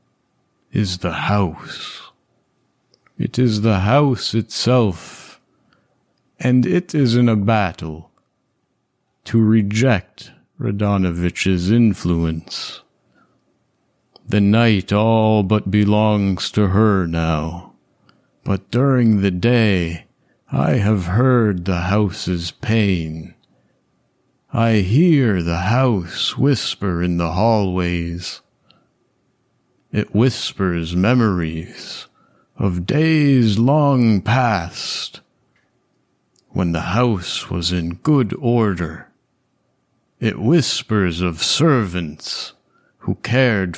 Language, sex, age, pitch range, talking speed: English, male, 50-69, 90-120 Hz, 90 wpm